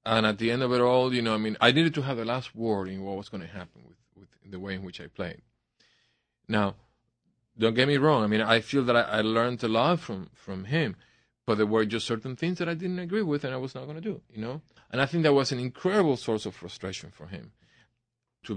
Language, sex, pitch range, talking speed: English, male, 105-125 Hz, 270 wpm